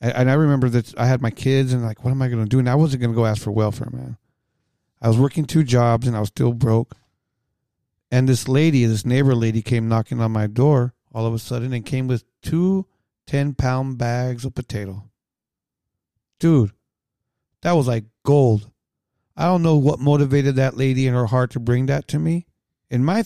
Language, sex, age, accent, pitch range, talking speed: English, male, 40-59, American, 120-145 Hz, 210 wpm